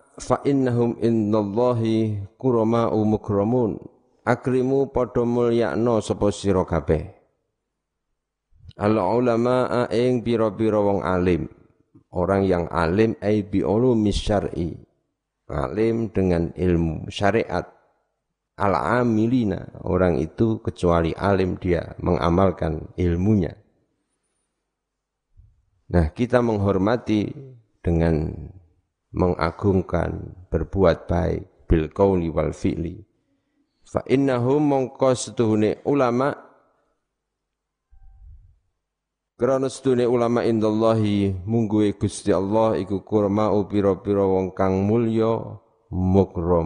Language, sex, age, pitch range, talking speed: Indonesian, male, 50-69, 90-115 Hz, 60 wpm